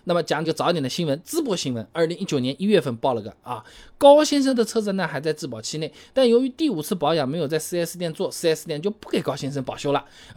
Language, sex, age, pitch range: Chinese, male, 20-39, 155-240 Hz